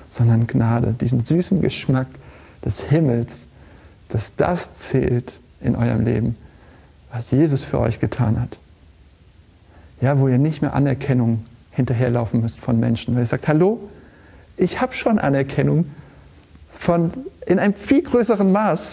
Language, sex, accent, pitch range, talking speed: German, male, German, 110-160 Hz, 135 wpm